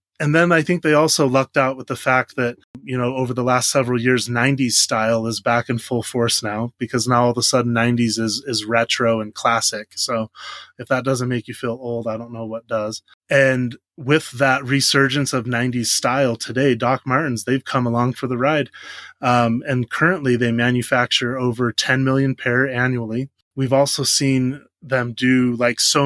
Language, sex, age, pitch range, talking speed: English, male, 20-39, 115-135 Hz, 195 wpm